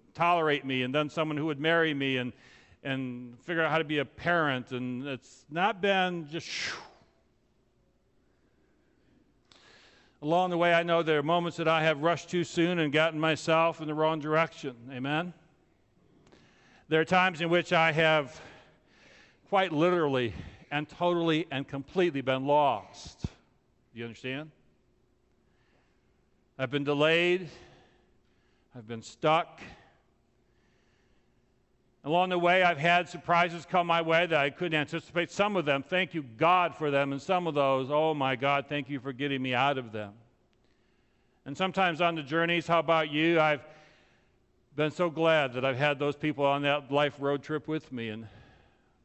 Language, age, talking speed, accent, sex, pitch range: English, 50-69, 160 wpm, American, male, 125-165 Hz